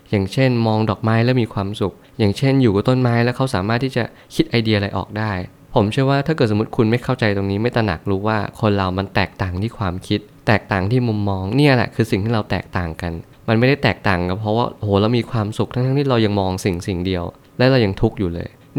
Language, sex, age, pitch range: Thai, male, 20-39, 100-120 Hz